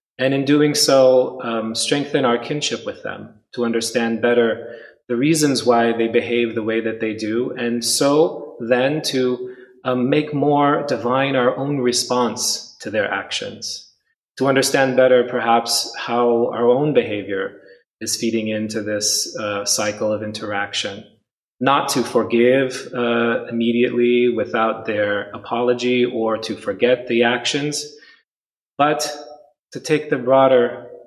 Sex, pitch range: male, 110-125 Hz